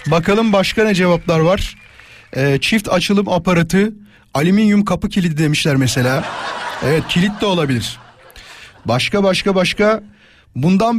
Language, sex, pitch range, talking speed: Turkish, male, 135-185 Hz, 120 wpm